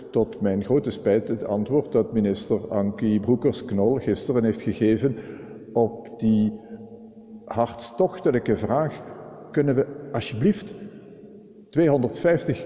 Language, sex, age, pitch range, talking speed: Dutch, male, 50-69, 115-150 Hz, 100 wpm